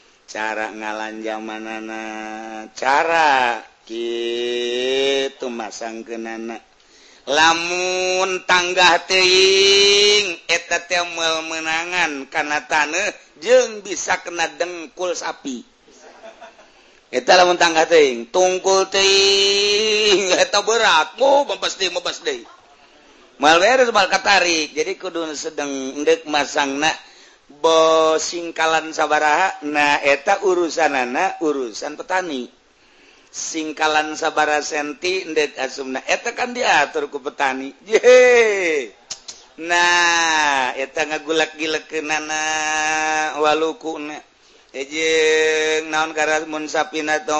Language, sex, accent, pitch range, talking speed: Indonesian, male, native, 150-185 Hz, 80 wpm